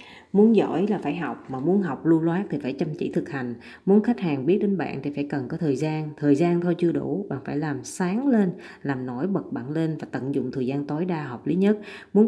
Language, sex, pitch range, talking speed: Vietnamese, female, 140-200 Hz, 265 wpm